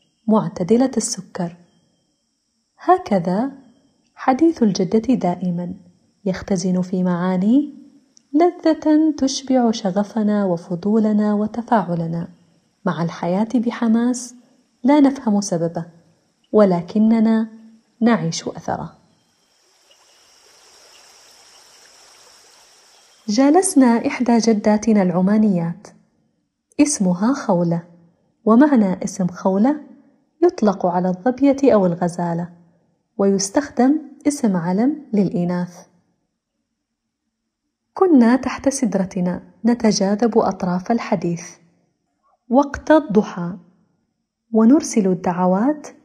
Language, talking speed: Arabic, 65 wpm